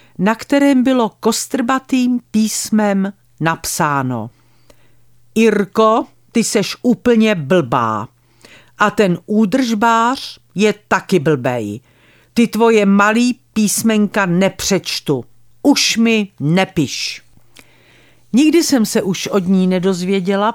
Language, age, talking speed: Czech, 50-69, 95 wpm